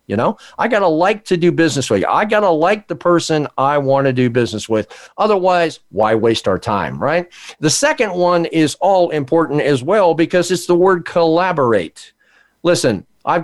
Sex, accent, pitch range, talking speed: male, American, 140-185 Hz, 195 wpm